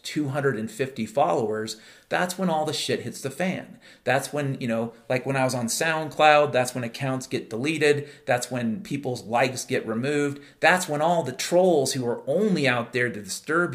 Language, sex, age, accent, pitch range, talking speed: English, male, 40-59, American, 130-175 Hz, 190 wpm